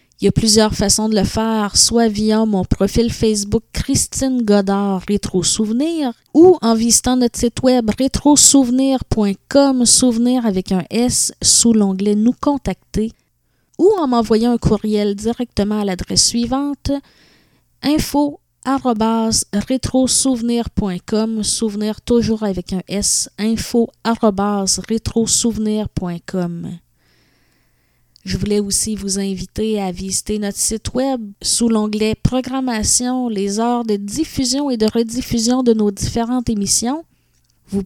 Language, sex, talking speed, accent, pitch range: French, female, 120 wpm, Canadian, 200-250 Hz